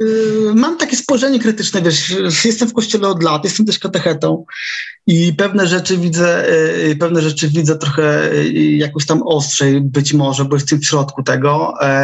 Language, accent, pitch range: Polish, native, 150-200 Hz